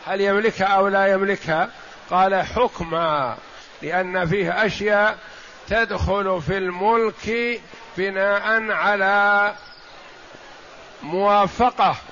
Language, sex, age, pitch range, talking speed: Arabic, male, 50-69, 190-225 Hz, 80 wpm